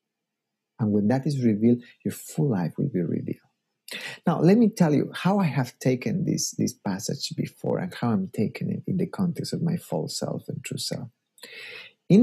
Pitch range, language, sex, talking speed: 115-145 Hz, English, male, 195 wpm